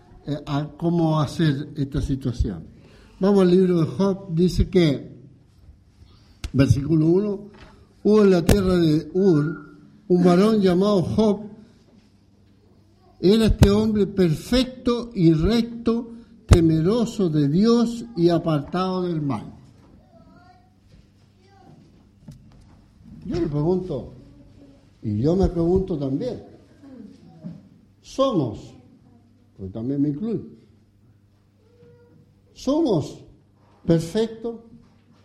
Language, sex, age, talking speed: English, male, 60-79, 90 wpm